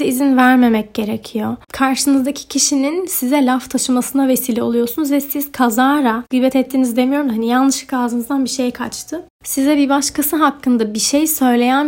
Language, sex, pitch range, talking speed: Turkish, female, 245-290 Hz, 145 wpm